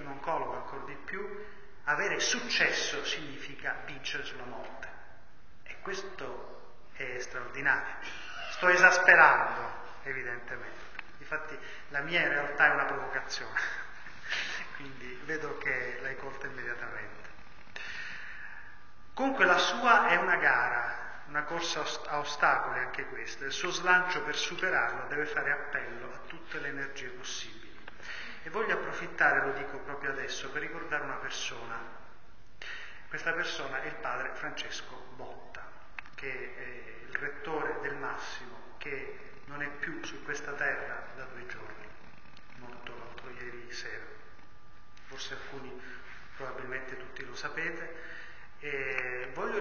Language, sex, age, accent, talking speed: Italian, male, 30-49, native, 125 wpm